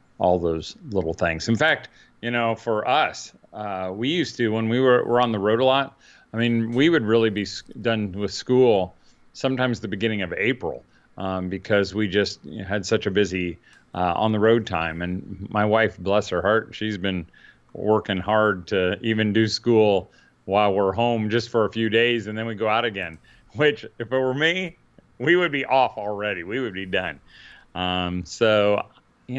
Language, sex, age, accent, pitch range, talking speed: English, male, 40-59, American, 95-130 Hz, 195 wpm